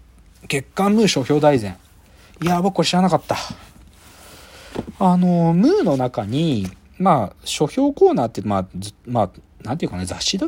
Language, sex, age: Japanese, male, 40-59